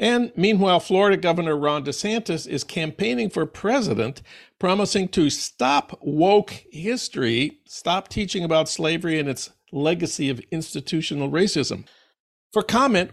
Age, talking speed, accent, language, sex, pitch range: 50-69, 125 wpm, American, English, male, 150-200 Hz